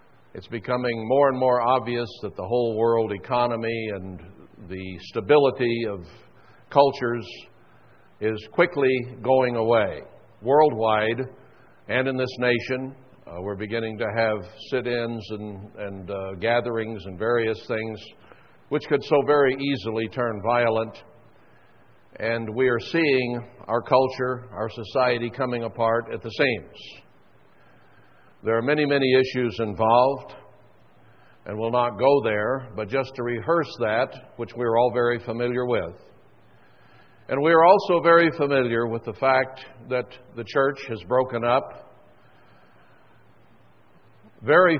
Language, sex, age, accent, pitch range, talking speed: English, male, 60-79, American, 115-130 Hz, 125 wpm